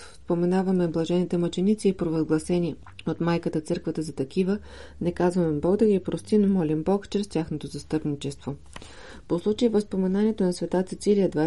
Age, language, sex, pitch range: 30-49, Bulgarian, female, 160-185 Hz